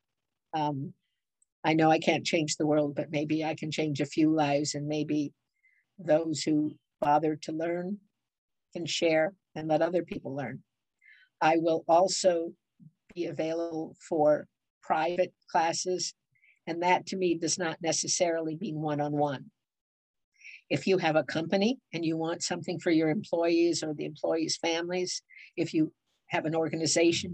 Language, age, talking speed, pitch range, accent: English, 60-79, 150 wpm, 160-180 Hz, American